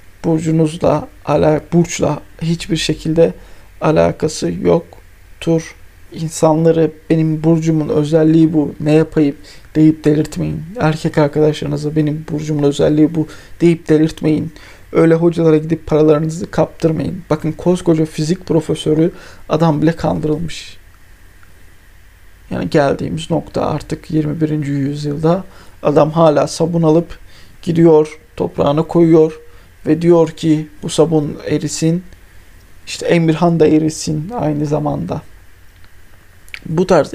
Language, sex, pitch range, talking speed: Turkish, male, 145-165 Hz, 100 wpm